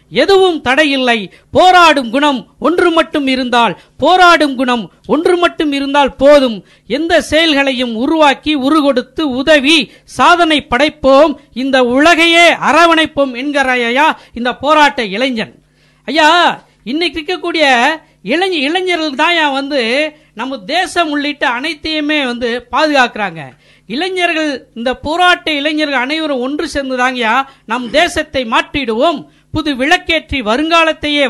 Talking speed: 100 wpm